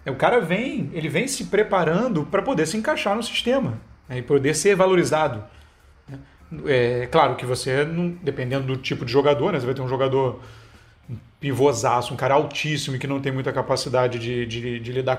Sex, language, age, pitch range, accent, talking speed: male, Portuguese, 40-59, 130-190 Hz, Brazilian, 200 wpm